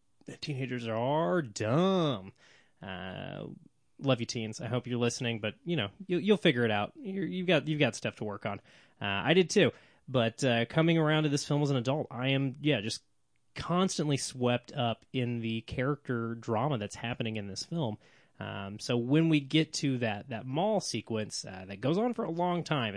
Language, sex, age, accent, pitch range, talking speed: English, male, 20-39, American, 115-150 Hz, 195 wpm